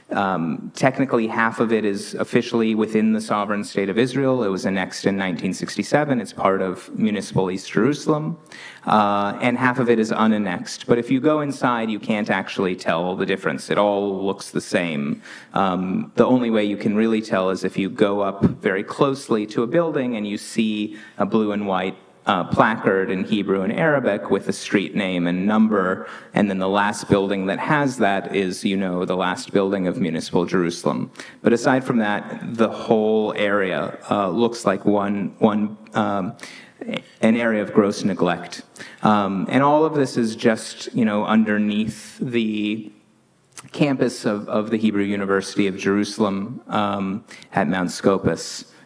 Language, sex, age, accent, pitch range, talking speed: English, male, 30-49, American, 100-115 Hz, 175 wpm